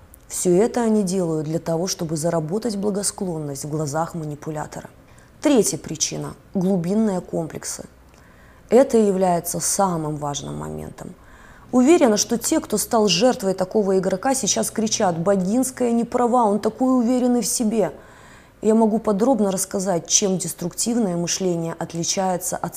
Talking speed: 130 wpm